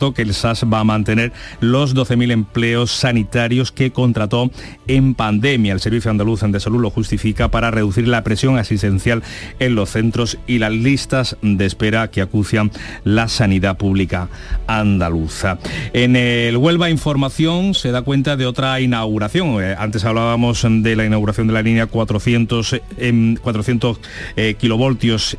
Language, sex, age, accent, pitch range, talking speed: Spanish, male, 40-59, Spanish, 110-130 Hz, 145 wpm